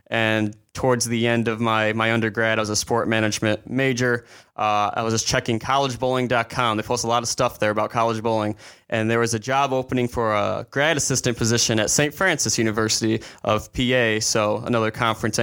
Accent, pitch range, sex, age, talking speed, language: American, 110-125 Hz, male, 20-39, 195 wpm, English